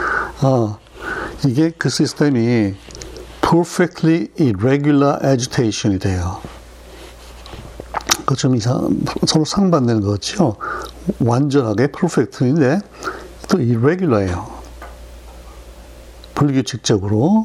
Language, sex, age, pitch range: Korean, male, 60-79, 105-145 Hz